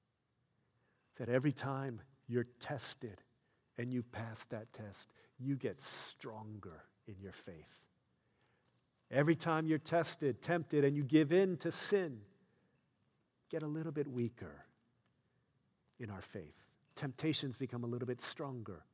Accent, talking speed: American, 130 wpm